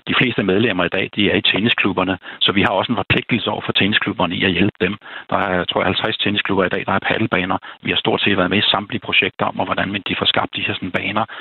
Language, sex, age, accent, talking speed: Danish, male, 60-79, native, 280 wpm